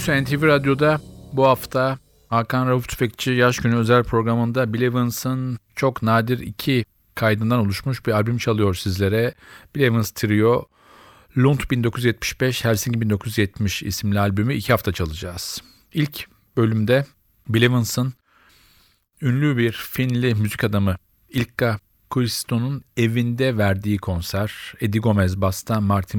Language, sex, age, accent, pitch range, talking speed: Turkish, male, 40-59, native, 105-130 Hz, 120 wpm